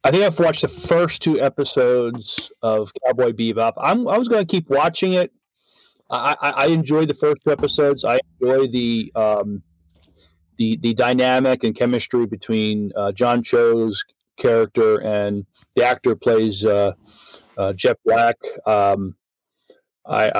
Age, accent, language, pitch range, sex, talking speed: 40-59, American, English, 110-170 Hz, male, 150 wpm